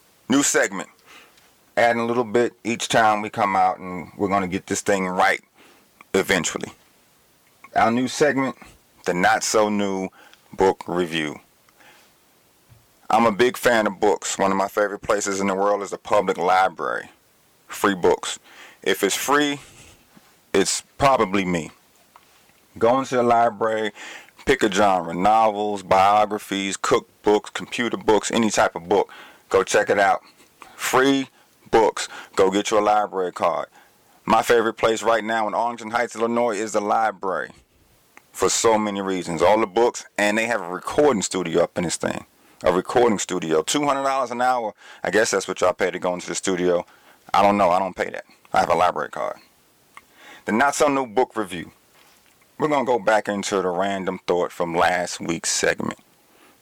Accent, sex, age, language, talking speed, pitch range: American, male, 30-49, English, 165 wpm, 95-120 Hz